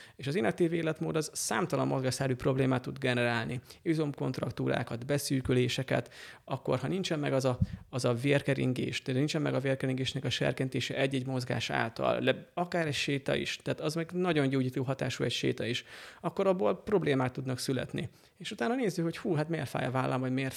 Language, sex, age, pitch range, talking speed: Hungarian, male, 30-49, 130-160 Hz, 180 wpm